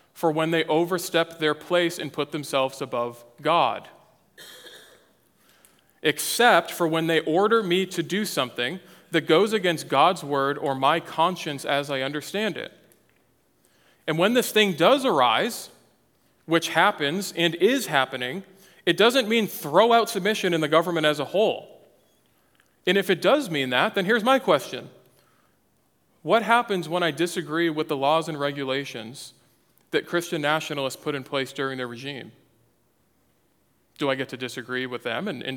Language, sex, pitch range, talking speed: English, male, 135-185 Hz, 155 wpm